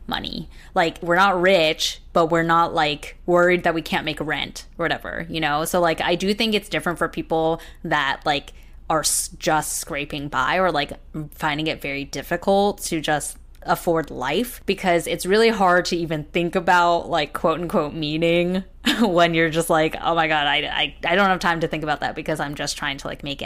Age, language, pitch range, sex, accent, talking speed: 10-29, English, 155-175 Hz, female, American, 205 wpm